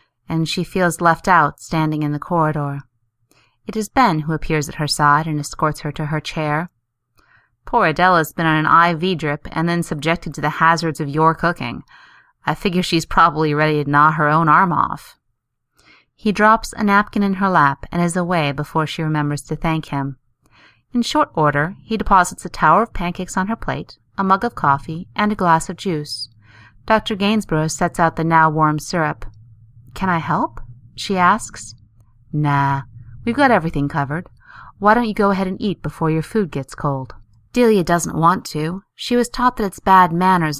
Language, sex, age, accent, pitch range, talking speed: English, female, 30-49, American, 145-185 Hz, 190 wpm